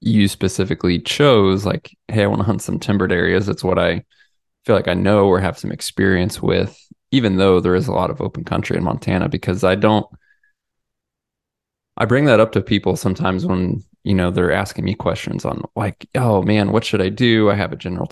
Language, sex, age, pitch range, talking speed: English, male, 20-39, 90-110 Hz, 210 wpm